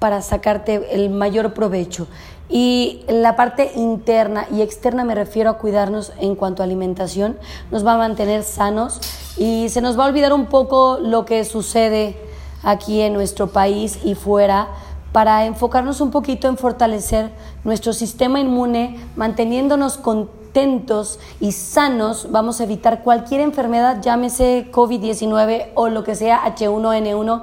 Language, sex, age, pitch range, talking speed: Spanish, female, 30-49, 215-250 Hz, 145 wpm